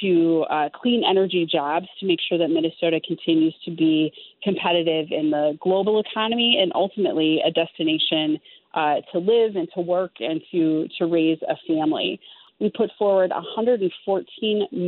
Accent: American